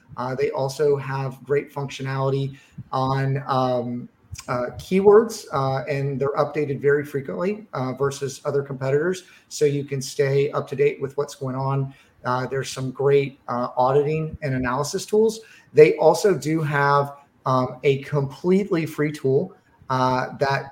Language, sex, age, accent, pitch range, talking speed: English, male, 30-49, American, 130-150 Hz, 150 wpm